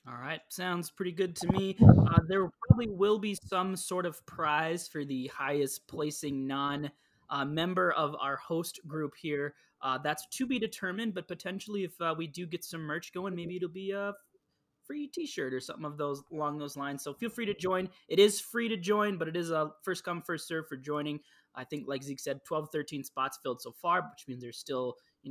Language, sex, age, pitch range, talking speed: English, male, 20-39, 145-195 Hz, 220 wpm